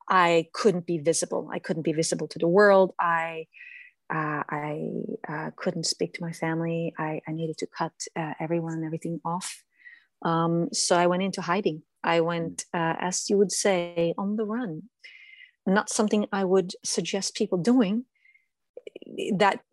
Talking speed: 165 wpm